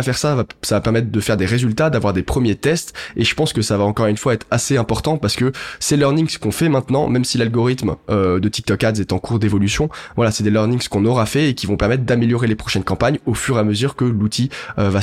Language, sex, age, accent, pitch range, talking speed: French, male, 20-39, French, 100-125 Hz, 270 wpm